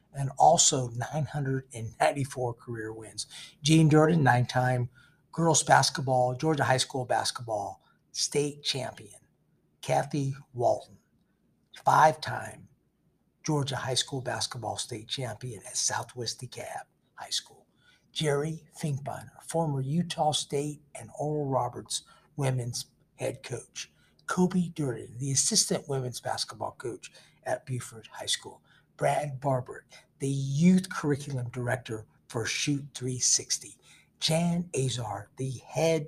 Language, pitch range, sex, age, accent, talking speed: English, 125-155 Hz, male, 50-69, American, 105 wpm